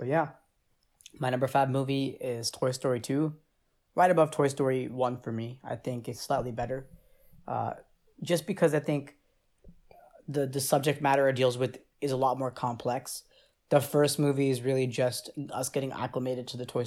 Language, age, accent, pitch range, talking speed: English, 20-39, American, 120-135 Hz, 180 wpm